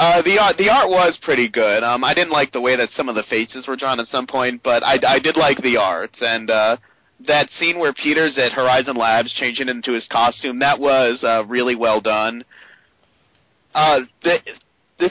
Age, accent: 30-49, American